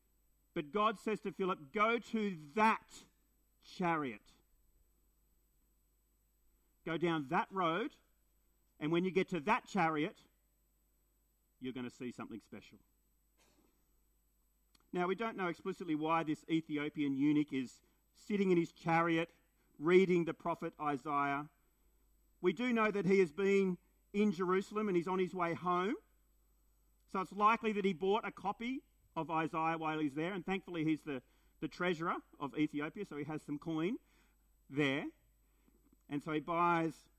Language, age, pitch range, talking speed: English, 40-59, 145-195 Hz, 145 wpm